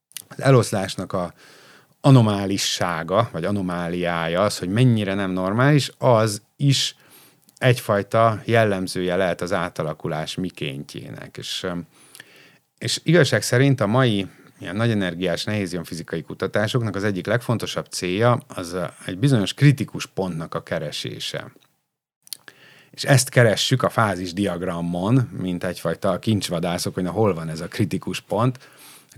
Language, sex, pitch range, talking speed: Hungarian, male, 95-125 Hz, 115 wpm